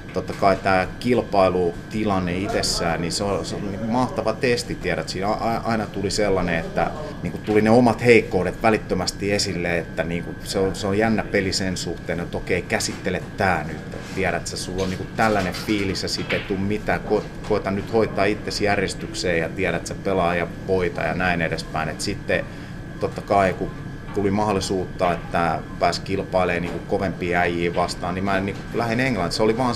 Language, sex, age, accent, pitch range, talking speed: Finnish, male, 30-49, native, 90-105 Hz, 185 wpm